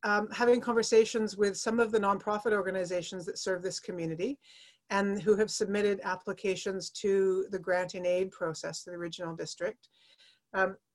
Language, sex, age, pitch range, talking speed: English, female, 40-59, 190-225 Hz, 160 wpm